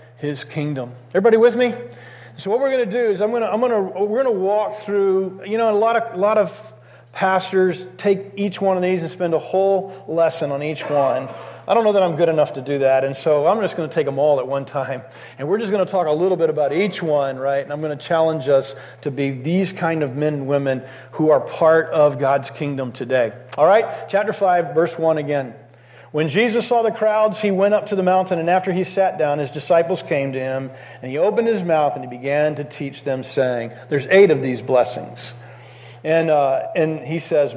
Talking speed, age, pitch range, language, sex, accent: 240 wpm, 40-59, 140-200 Hz, English, male, American